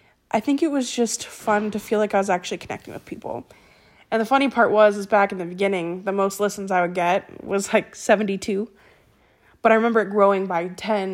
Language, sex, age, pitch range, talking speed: English, female, 20-39, 190-215 Hz, 220 wpm